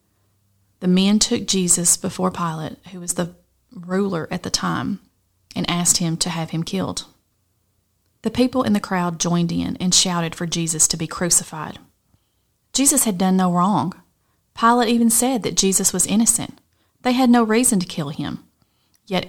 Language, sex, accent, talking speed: English, female, American, 170 wpm